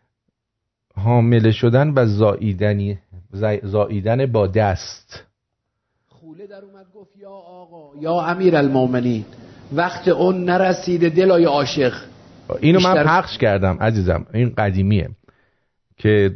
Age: 50-69